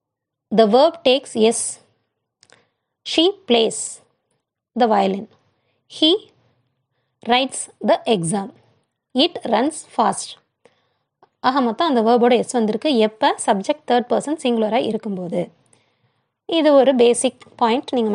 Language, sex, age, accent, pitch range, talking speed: Tamil, female, 20-39, native, 215-275 Hz, 110 wpm